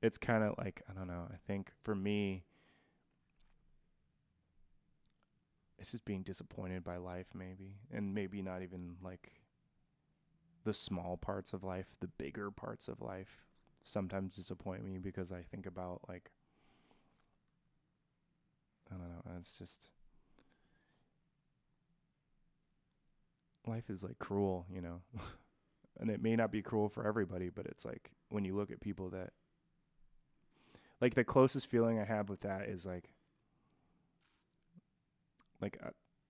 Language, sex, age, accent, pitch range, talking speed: English, male, 20-39, American, 95-115 Hz, 130 wpm